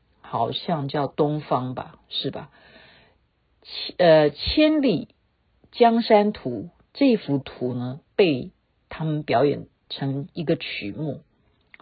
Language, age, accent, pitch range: Chinese, 50-69, native, 145-220 Hz